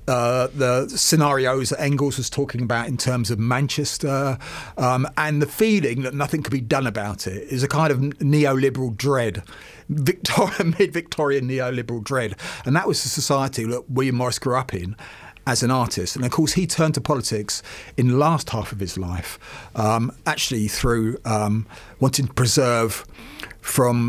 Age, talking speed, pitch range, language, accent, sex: 40-59, 170 wpm, 120-150 Hz, English, British, male